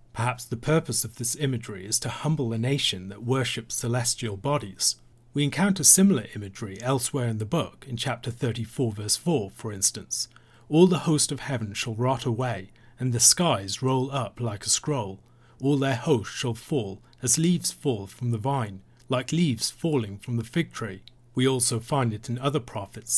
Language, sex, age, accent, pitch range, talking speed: English, male, 40-59, British, 115-135 Hz, 185 wpm